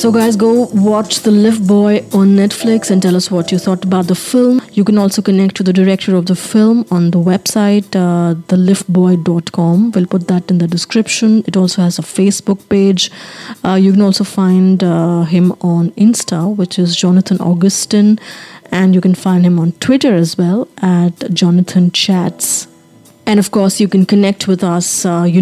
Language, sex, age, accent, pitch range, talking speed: English, female, 30-49, Indian, 180-205 Hz, 185 wpm